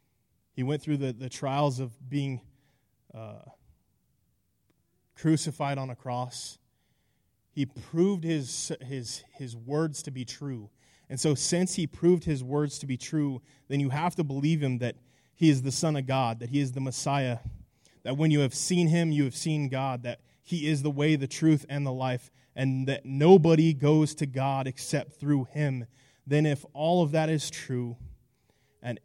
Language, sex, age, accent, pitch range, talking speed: English, male, 20-39, American, 120-145 Hz, 180 wpm